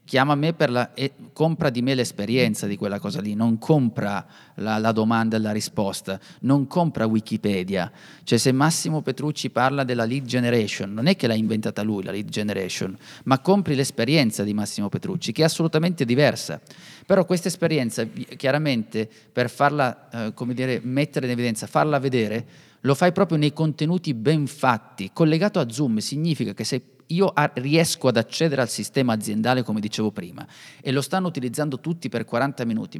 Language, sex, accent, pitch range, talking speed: Italian, male, native, 110-150 Hz, 175 wpm